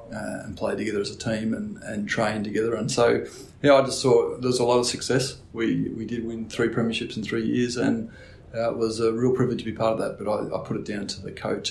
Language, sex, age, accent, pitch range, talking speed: English, male, 30-49, Australian, 105-125 Hz, 280 wpm